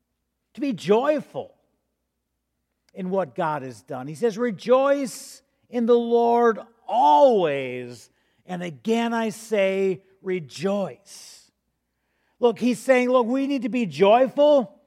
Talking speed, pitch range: 115 wpm, 180-250 Hz